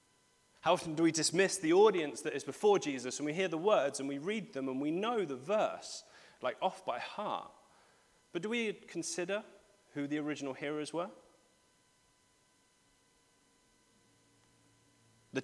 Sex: male